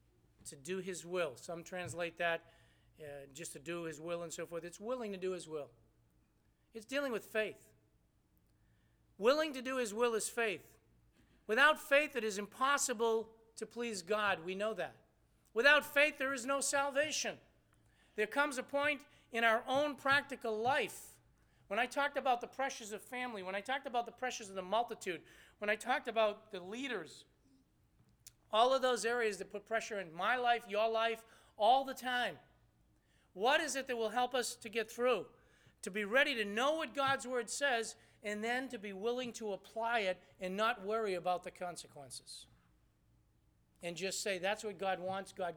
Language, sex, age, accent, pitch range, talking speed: English, male, 40-59, American, 180-245 Hz, 180 wpm